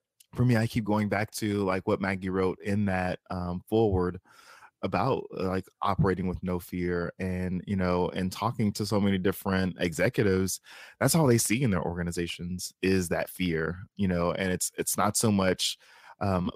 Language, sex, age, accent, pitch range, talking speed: English, male, 20-39, American, 90-105 Hz, 180 wpm